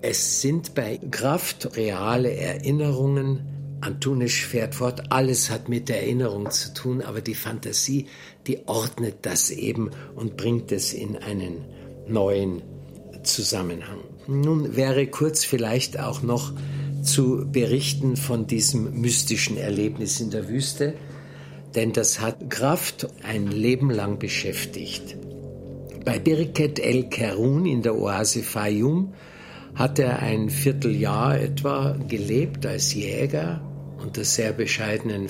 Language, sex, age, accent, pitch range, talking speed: German, male, 60-79, German, 115-140 Hz, 120 wpm